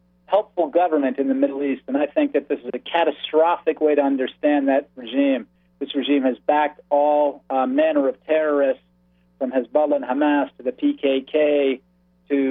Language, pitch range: English, 130-160 Hz